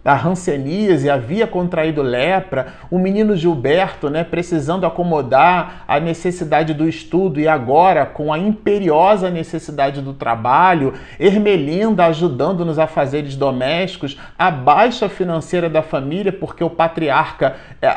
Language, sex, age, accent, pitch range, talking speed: Portuguese, male, 40-59, Brazilian, 140-190 Hz, 120 wpm